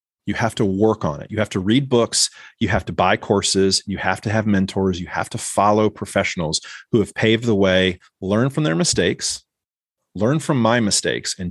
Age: 30-49